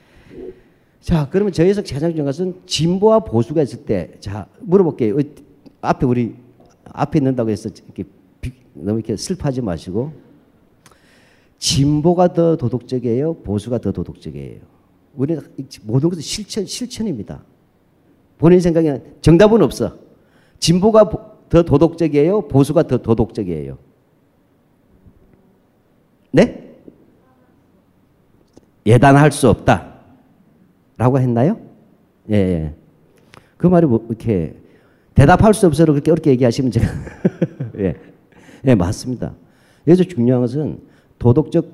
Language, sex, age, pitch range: Korean, male, 40-59, 115-175 Hz